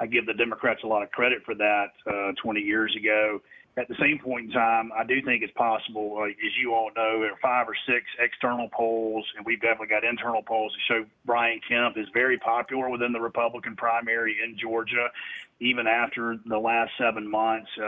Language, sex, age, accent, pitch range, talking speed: English, male, 40-59, American, 115-130 Hz, 210 wpm